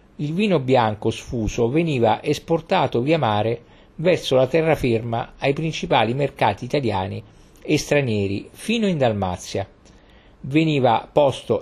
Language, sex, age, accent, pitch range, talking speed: Italian, male, 50-69, native, 105-150 Hz, 115 wpm